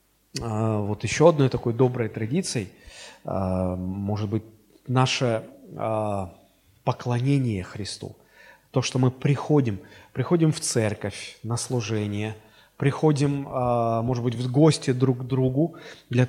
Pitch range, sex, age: 115-150 Hz, male, 30-49